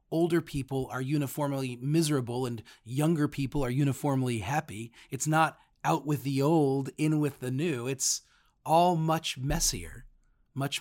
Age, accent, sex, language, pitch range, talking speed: 40-59, American, male, English, 125-160 Hz, 145 wpm